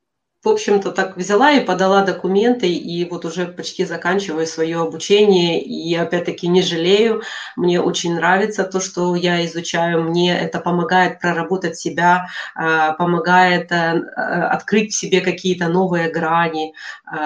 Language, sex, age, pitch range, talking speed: Russian, female, 20-39, 165-185 Hz, 130 wpm